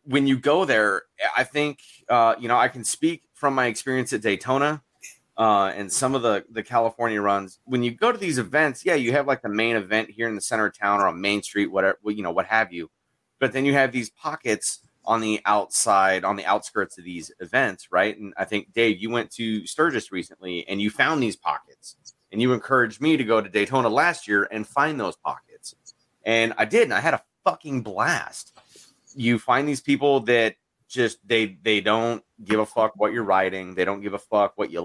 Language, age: English, 30-49